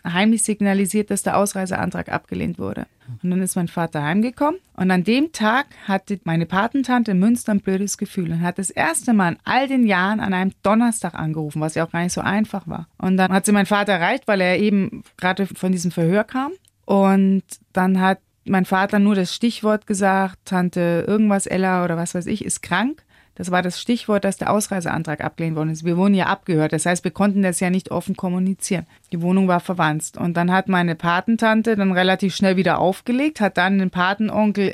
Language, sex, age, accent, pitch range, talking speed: German, female, 30-49, German, 180-215 Hz, 205 wpm